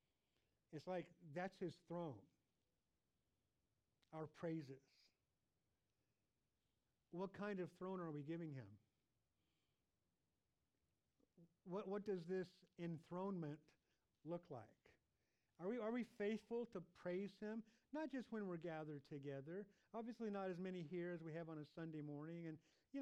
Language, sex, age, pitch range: English, male, 50-69, 155-195 Hz